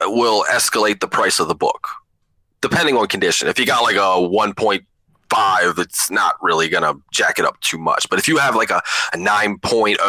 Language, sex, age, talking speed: English, male, 20-39, 190 wpm